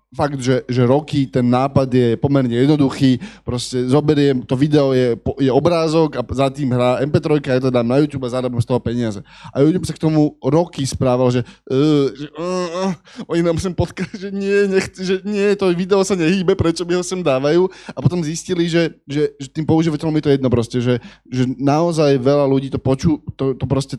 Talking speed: 205 wpm